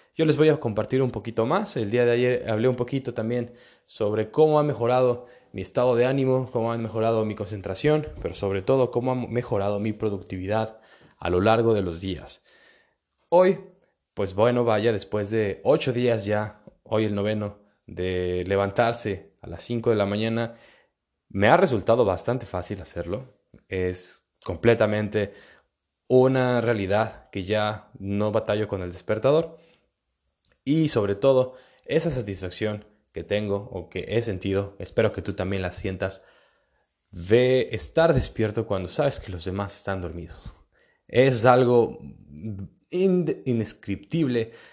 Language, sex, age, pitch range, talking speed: Spanish, male, 20-39, 100-125 Hz, 150 wpm